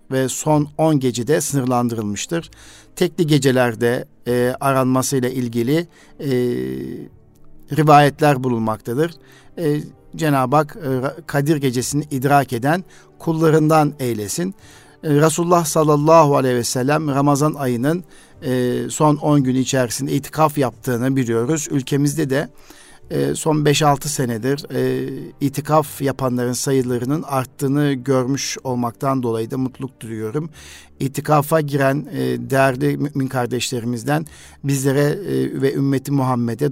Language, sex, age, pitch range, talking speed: Turkish, male, 50-69, 125-145 Hz, 100 wpm